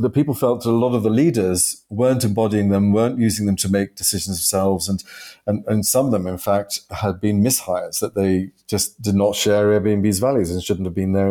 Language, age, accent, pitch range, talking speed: English, 40-59, British, 95-115 Hz, 225 wpm